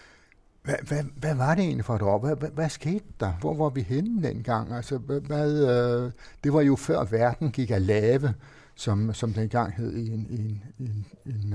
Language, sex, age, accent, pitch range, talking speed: Danish, male, 60-79, native, 110-135 Hz, 195 wpm